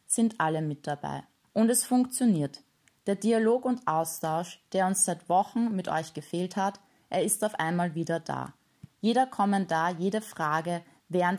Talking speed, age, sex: 160 wpm, 20-39, female